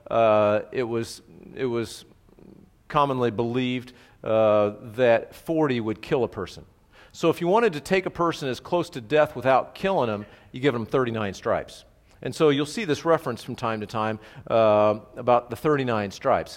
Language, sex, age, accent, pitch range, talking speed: English, male, 50-69, American, 115-150 Hz, 175 wpm